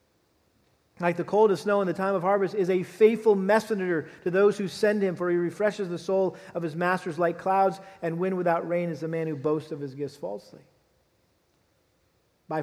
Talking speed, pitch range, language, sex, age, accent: 200 wpm, 160-210 Hz, English, male, 40-59, American